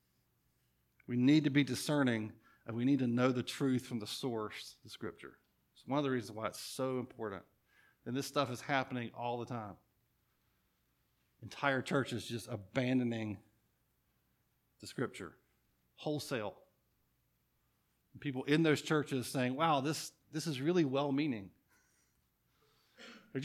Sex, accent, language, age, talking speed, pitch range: male, American, English, 50-69, 135 wpm, 115-150 Hz